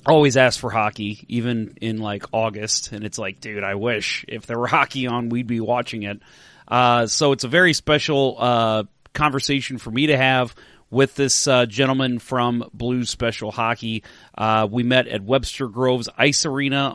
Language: English